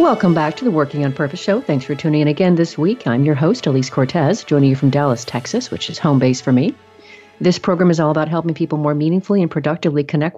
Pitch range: 140-165 Hz